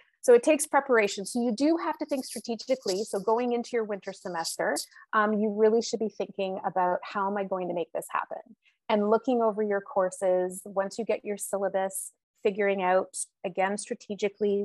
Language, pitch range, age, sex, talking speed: English, 190-230 Hz, 30-49, female, 190 wpm